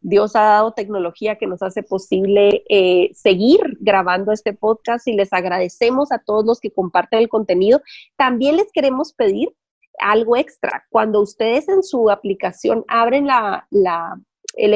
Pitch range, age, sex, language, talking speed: 215-290 Hz, 30-49, female, Spanish, 145 wpm